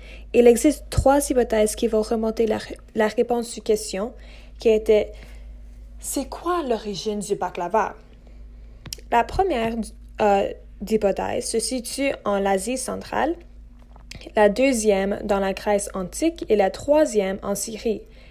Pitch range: 195-230 Hz